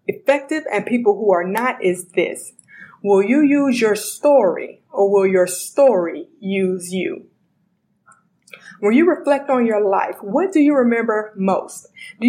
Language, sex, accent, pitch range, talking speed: English, female, American, 195-265 Hz, 150 wpm